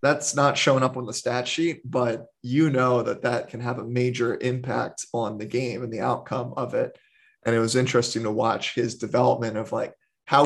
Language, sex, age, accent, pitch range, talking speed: English, male, 20-39, American, 120-140 Hz, 210 wpm